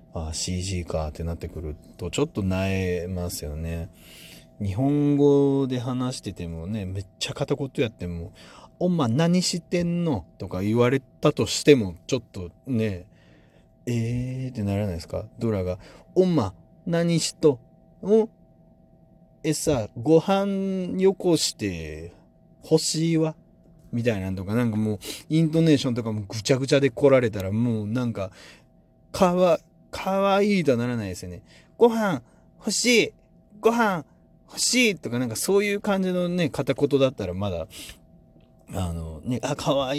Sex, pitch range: male, 95-155 Hz